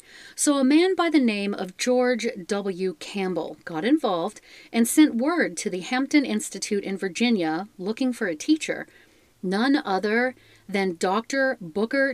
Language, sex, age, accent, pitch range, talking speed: English, female, 40-59, American, 195-270 Hz, 150 wpm